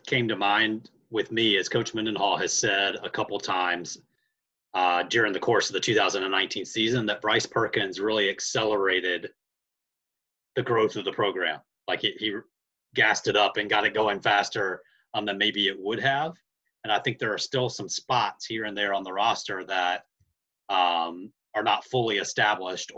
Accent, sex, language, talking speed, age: American, male, English, 180 wpm, 30-49